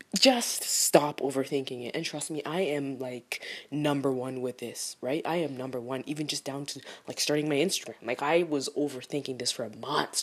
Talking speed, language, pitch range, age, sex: 200 wpm, English, 135-185 Hz, 20-39, female